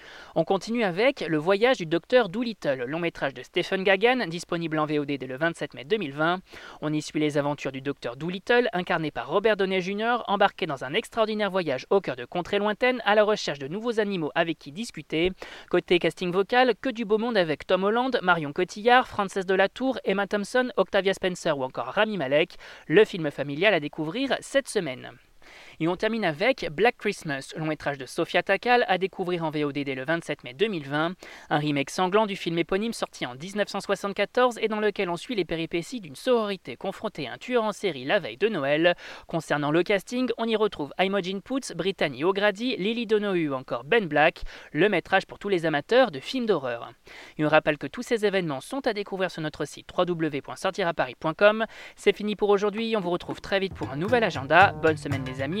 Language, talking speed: French, 205 wpm